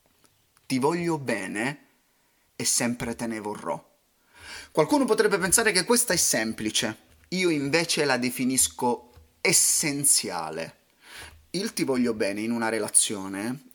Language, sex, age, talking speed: Italian, male, 30-49, 120 wpm